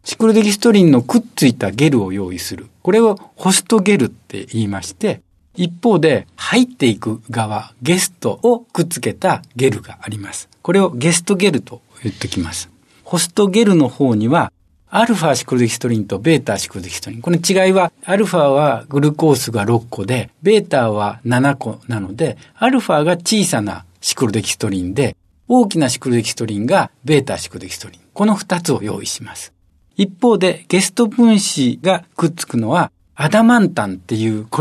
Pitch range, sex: 110-185 Hz, male